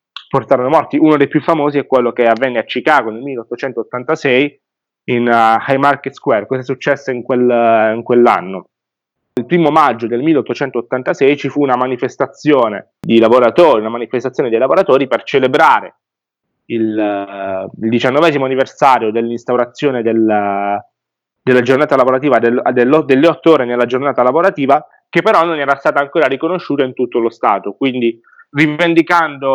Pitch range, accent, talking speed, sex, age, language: 120-160 Hz, native, 155 wpm, male, 20-39, Italian